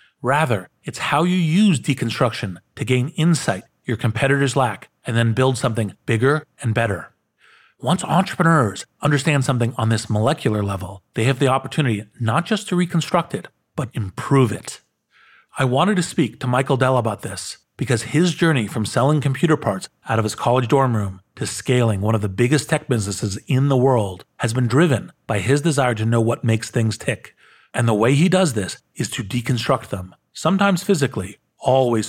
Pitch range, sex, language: 110-145 Hz, male, English